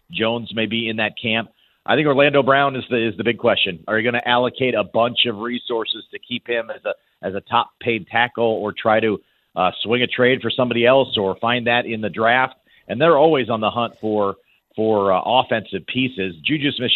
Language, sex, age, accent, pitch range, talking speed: English, male, 40-59, American, 110-130 Hz, 225 wpm